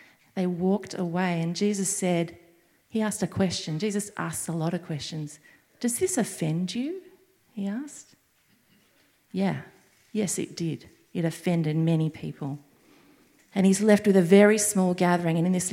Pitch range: 180-245 Hz